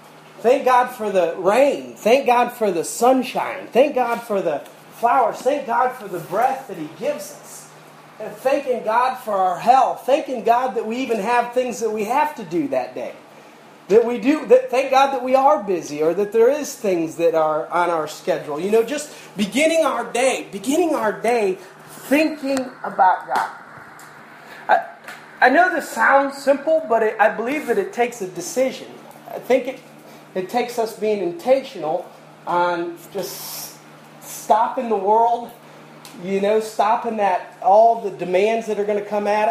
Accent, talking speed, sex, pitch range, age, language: American, 180 wpm, male, 195-255 Hz, 30-49, English